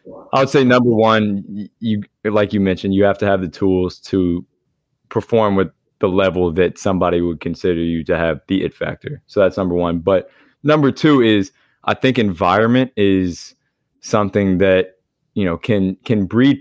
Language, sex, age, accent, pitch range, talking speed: English, male, 20-39, American, 90-110 Hz, 175 wpm